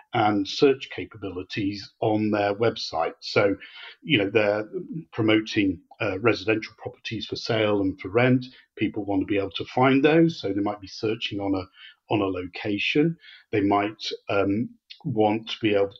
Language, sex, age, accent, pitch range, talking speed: English, male, 40-59, British, 105-125 Hz, 165 wpm